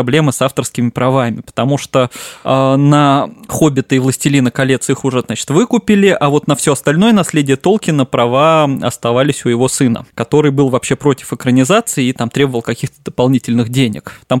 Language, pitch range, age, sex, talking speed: Russian, 125-160 Hz, 20-39, male, 165 wpm